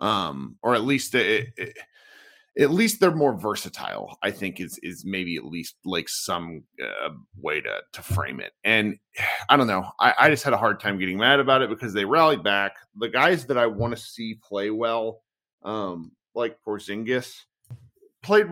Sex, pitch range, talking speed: male, 110-155 Hz, 190 wpm